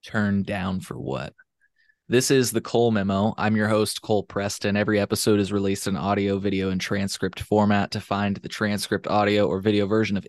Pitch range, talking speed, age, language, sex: 100-120 Hz, 190 wpm, 20-39, English, male